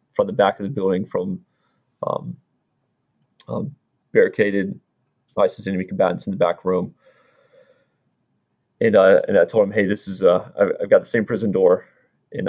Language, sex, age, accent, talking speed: English, male, 20-39, American, 165 wpm